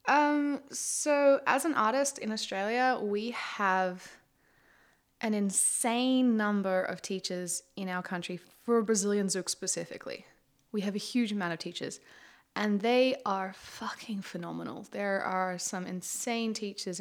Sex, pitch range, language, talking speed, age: female, 185-220 Hz, English, 135 wpm, 20-39